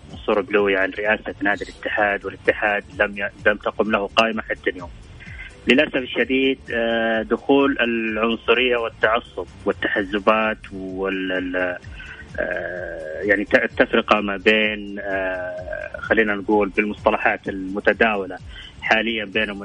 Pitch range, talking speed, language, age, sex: 100-115 Hz, 95 wpm, English, 30-49, male